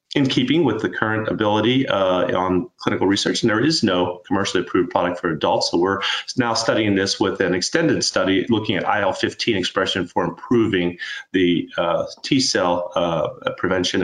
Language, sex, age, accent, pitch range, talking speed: English, male, 30-49, American, 95-130 Hz, 160 wpm